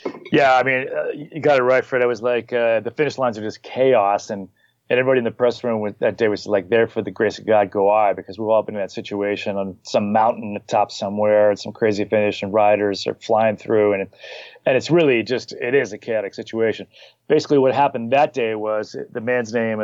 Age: 30-49